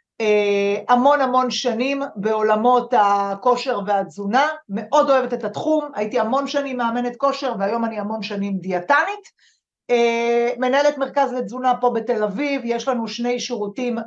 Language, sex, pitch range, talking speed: Hebrew, female, 210-260 Hz, 130 wpm